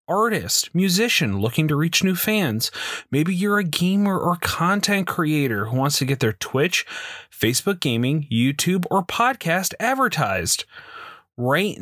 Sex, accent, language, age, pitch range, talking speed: male, American, English, 30-49, 125-180 Hz, 135 wpm